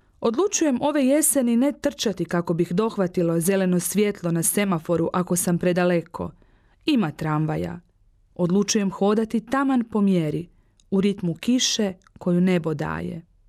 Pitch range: 170-225 Hz